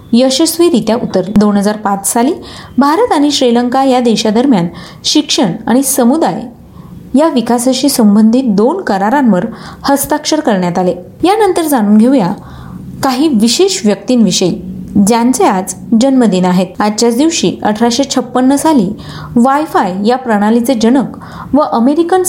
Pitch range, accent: 210-280 Hz, native